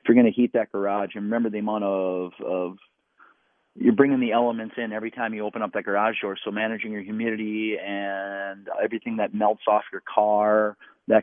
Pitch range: 105-120 Hz